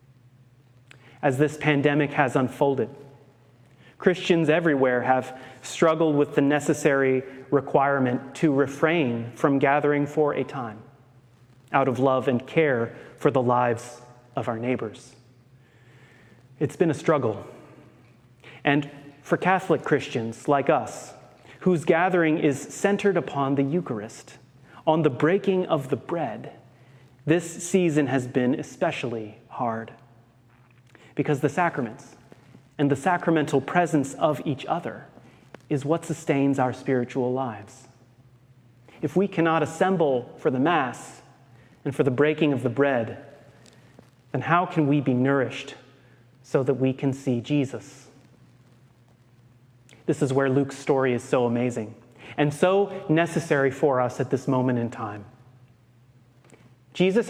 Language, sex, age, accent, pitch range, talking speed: English, male, 30-49, American, 125-150 Hz, 125 wpm